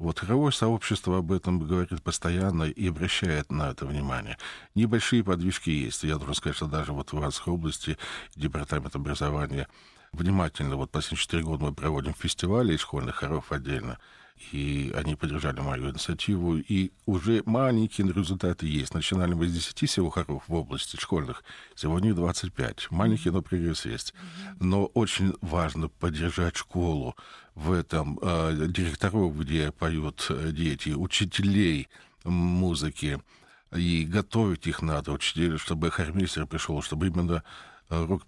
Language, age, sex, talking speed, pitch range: Russian, 50-69, male, 135 wpm, 75-90 Hz